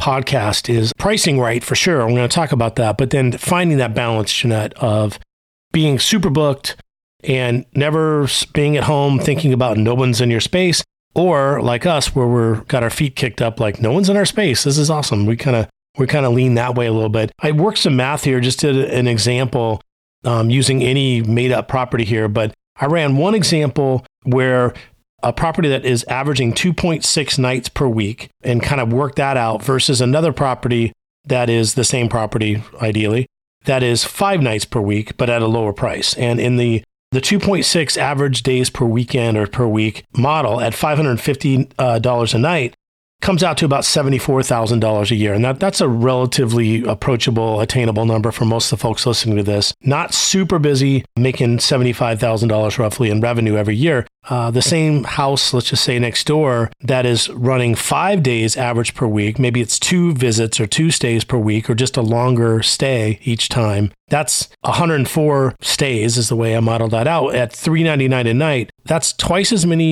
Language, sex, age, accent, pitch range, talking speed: English, male, 40-59, American, 115-145 Hz, 190 wpm